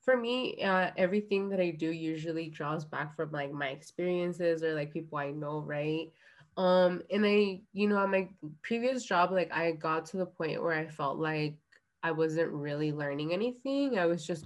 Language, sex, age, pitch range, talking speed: English, female, 20-39, 150-175 Hz, 190 wpm